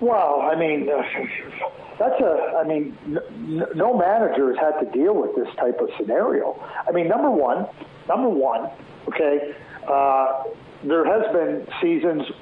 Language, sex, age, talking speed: English, male, 50-69, 145 wpm